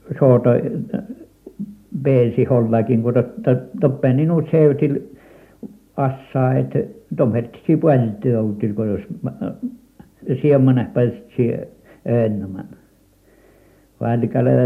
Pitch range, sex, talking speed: 110-140 Hz, male, 60 wpm